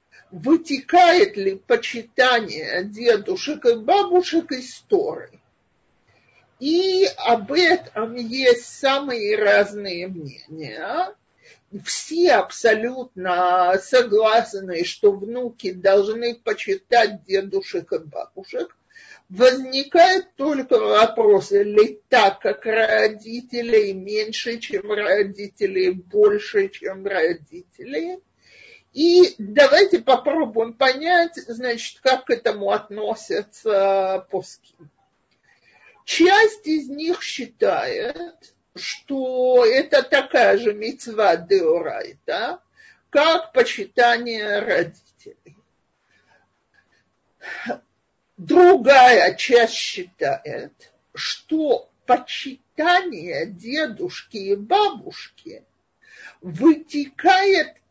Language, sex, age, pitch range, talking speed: Russian, male, 50-69, 210-350 Hz, 70 wpm